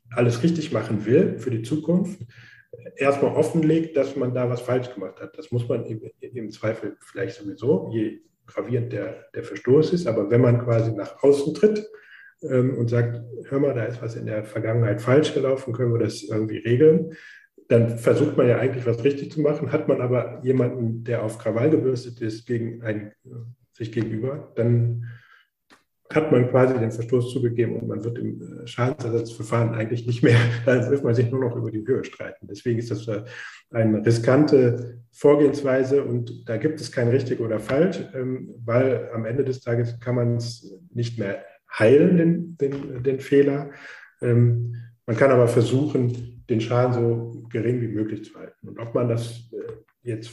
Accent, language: German, German